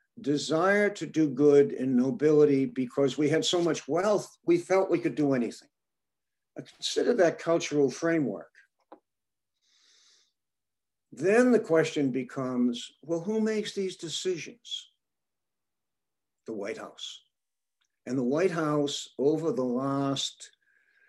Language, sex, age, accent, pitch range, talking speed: English, male, 60-79, American, 130-175 Hz, 115 wpm